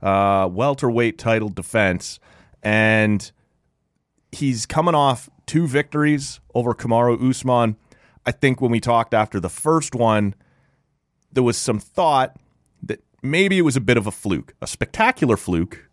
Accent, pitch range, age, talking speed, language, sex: American, 95-125 Hz, 30-49, 145 wpm, English, male